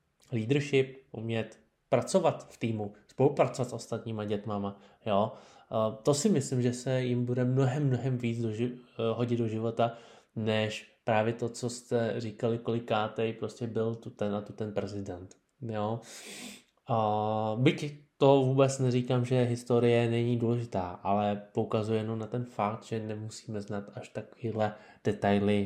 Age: 20-39